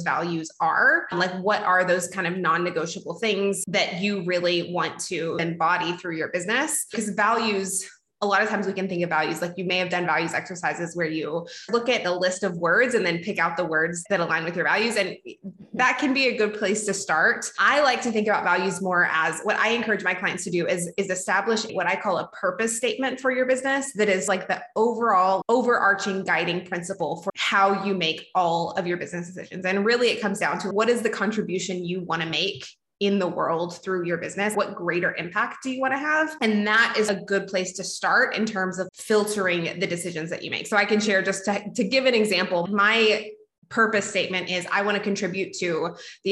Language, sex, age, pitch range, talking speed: English, female, 20-39, 180-215 Hz, 225 wpm